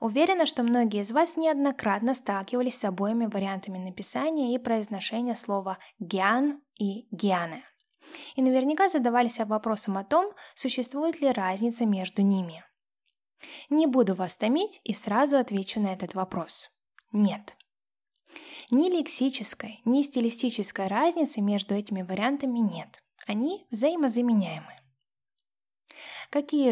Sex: female